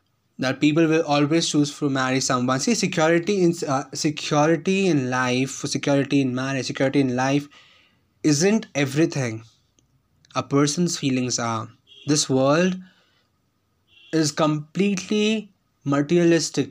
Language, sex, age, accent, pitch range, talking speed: English, male, 20-39, Indian, 125-165 Hz, 115 wpm